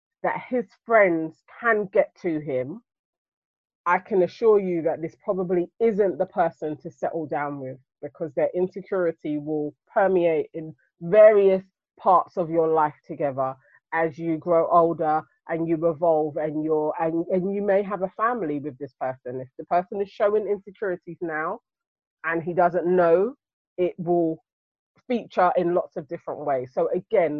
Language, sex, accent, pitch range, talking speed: English, female, British, 160-205 Hz, 160 wpm